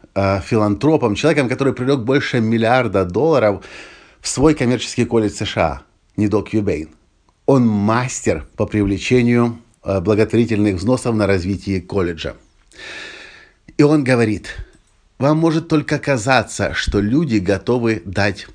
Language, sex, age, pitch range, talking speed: Russian, male, 50-69, 100-135 Hz, 110 wpm